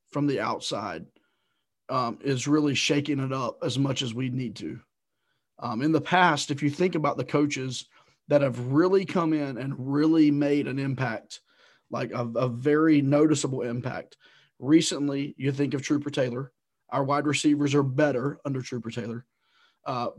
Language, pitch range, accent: English, 135-155 Hz, American